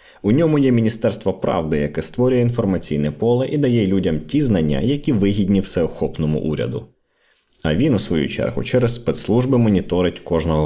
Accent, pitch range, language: native, 85-120 Hz, Ukrainian